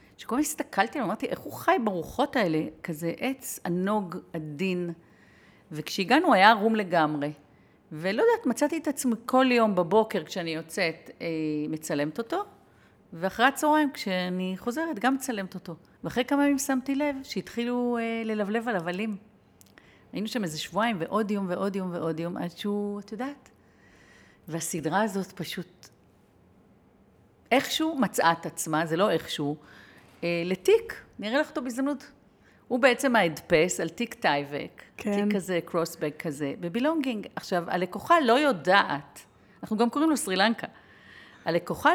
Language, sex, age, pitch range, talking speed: Hebrew, female, 40-59, 170-250 Hz, 140 wpm